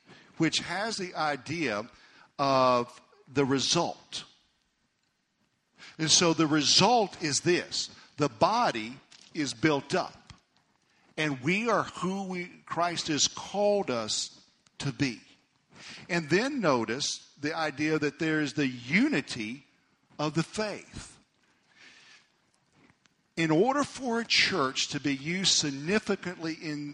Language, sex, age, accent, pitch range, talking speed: English, male, 50-69, American, 145-190 Hz, 115 wpm